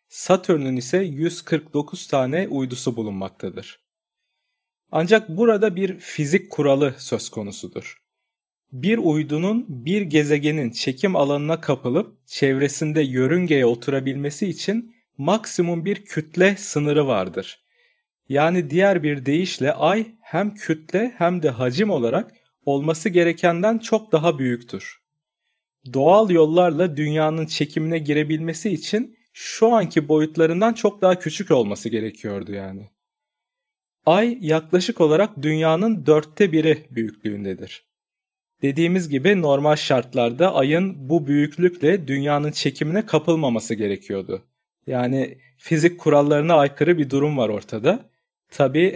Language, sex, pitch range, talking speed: Turkish, male, 135-185 Hz, 105 wpm